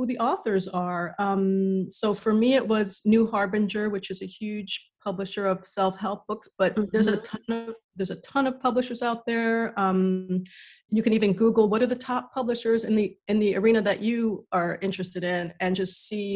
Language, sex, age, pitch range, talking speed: English, female, 30-49, 185-230 Hz, 200 wpm